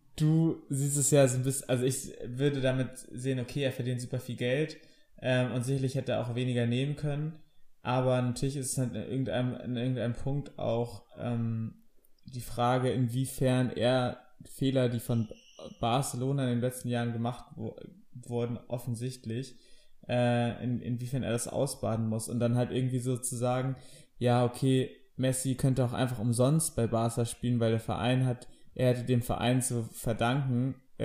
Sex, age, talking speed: male, 20-39, 165 wpm